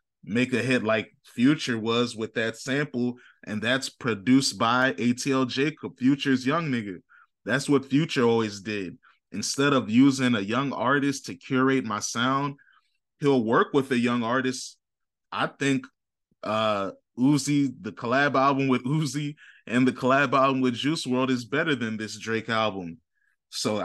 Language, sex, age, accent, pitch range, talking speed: English, male, 20-39, American, 115-135 Hz, 155 wpm